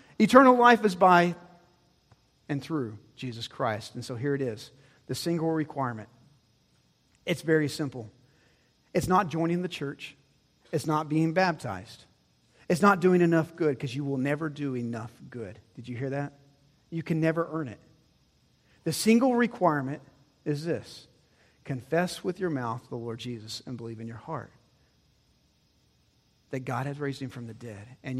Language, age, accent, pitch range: English, 40-59, American, 130-190 Hz